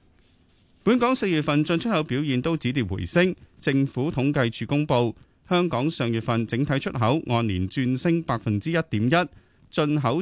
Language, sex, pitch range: Chinese, male, 110-160 Hz